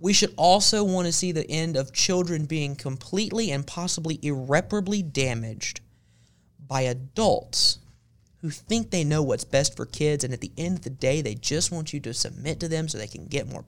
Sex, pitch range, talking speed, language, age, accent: male, 130-185 Hz, 200 wpm, English, 30-49, American